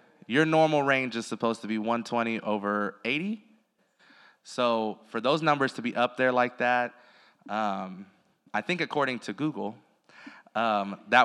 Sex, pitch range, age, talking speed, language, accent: male, 105-130 Hz, 20-39, 150 wpm, English, American